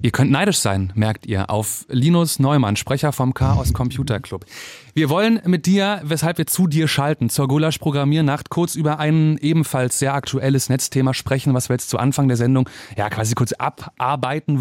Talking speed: 185 wpm